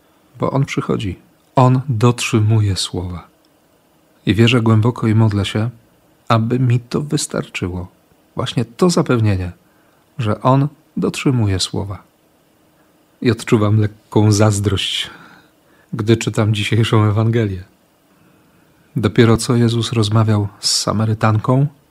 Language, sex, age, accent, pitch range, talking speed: Polish, male, 40-59, native, 105-130 Hz, 100 wpm